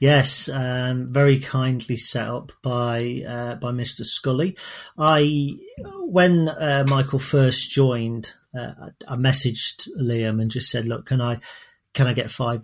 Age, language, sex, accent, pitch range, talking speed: 40-59, English, male, British, 115-130 Hz, 145 wpm